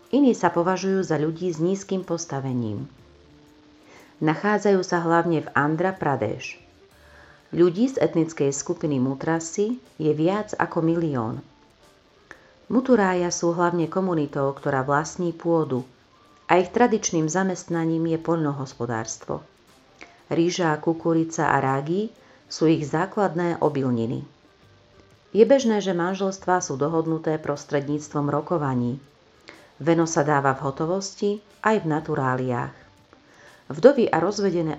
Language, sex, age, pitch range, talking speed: Slovak, female, 40-59, 145-180 Hz, 110 wpm